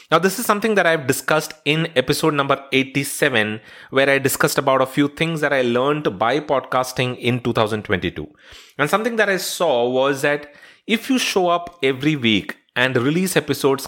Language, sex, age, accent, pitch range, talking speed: English, male, 30-49, Indian, 120-175 Hz, 175 wpm